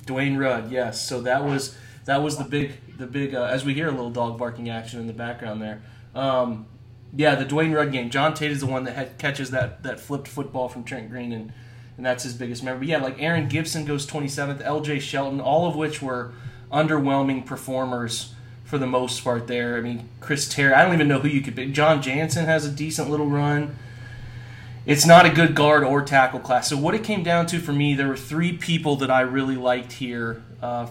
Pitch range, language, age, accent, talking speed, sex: 125-145 Hz, English, 20-39, American, 225 wpm, male